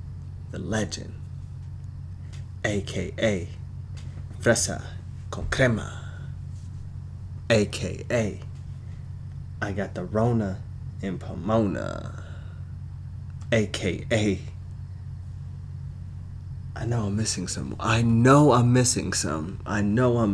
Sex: male